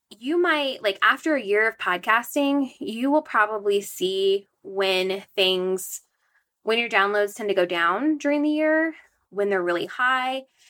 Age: 20-39